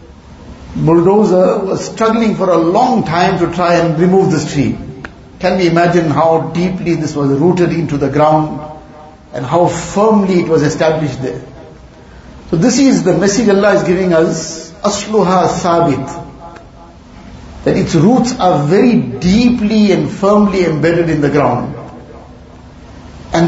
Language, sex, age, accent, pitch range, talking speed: English, male, 60-79, Indian, 155-190 Hz, 140 wpm